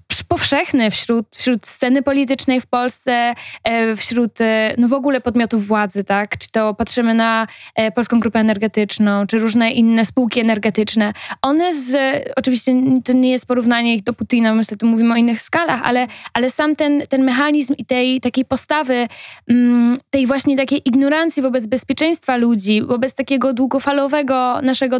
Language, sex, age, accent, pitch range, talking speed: Polish, female, 20-39, native, 230-270 Hz, 150 wpm